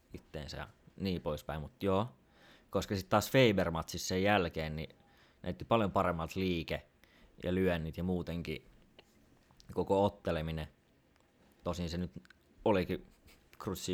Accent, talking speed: native, 115 wpm